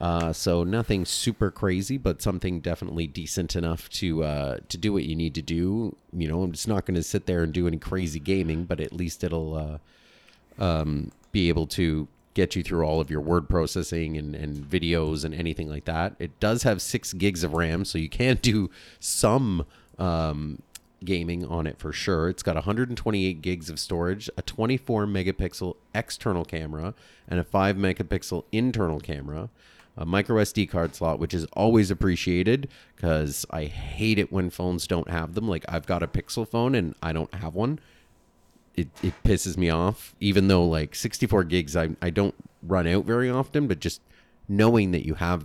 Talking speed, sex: 190 wpm, male